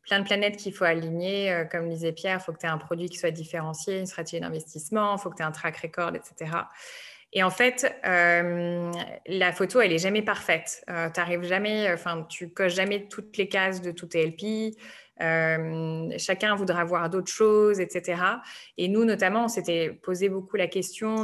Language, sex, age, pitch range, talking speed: French, female, 20-39, 165-195 Hz, 200 wpm